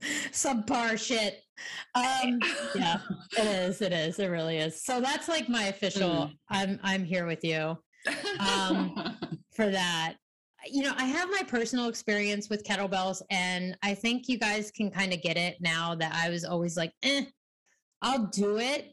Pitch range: 185-240 Hz